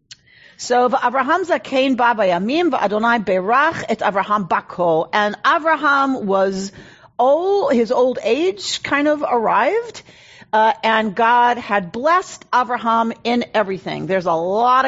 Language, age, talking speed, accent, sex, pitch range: English, 40-59, 90 wpm, American, female, 205-265 Hz